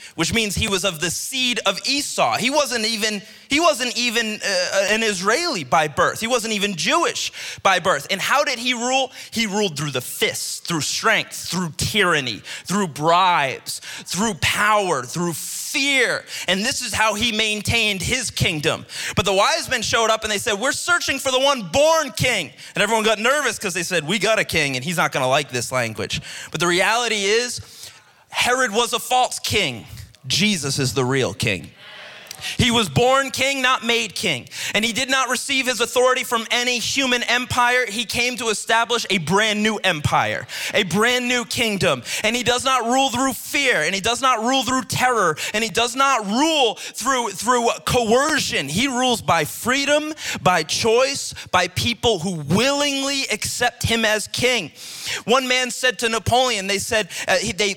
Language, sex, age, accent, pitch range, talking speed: English, male, 30-49, American, 200-255 Hz, 185 wpm